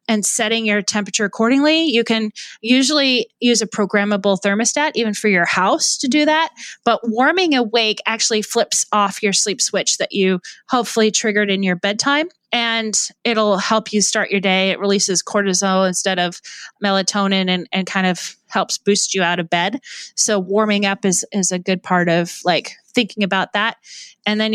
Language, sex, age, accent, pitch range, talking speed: English, female, 20-39, American, 190-225 Hz, 180 wpm